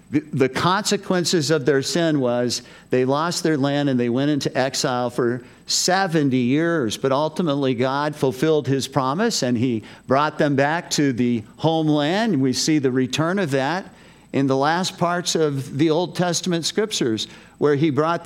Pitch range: 135-170 Hz